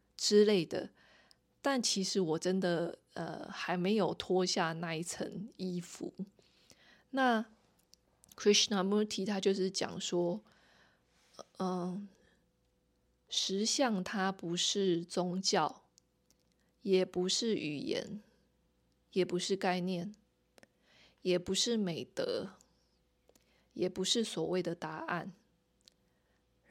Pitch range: 180-210 Hz